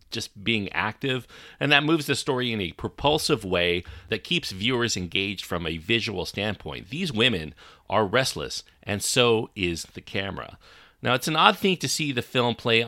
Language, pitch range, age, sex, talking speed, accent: English, 90-120 Hz, 40-59, male, 180 wpm, American